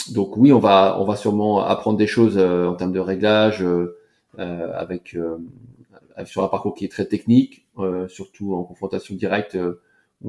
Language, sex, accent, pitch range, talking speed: French, male, French, 90-105 Hz, 185 wpm